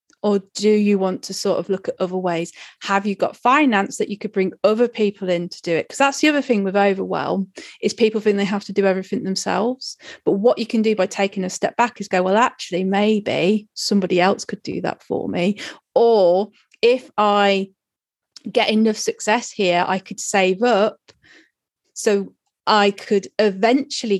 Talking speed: 195 wpm